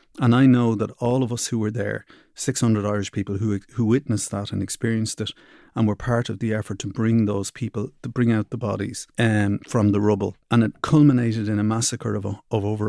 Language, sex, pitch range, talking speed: English, male, 105-125 Hz, 225 wpm